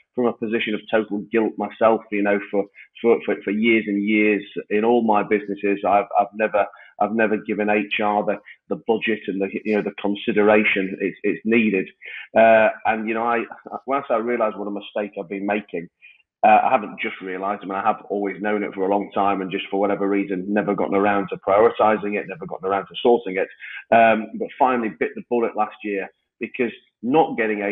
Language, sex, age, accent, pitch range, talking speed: English, male, 30-49, British, 100-110 Hz, 210 wpm